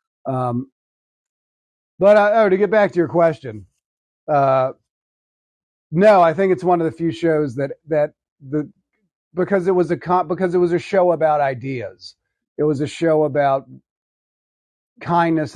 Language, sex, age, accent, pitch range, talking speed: English, male, 40-59, American, 120-165 Hz, 160 wpm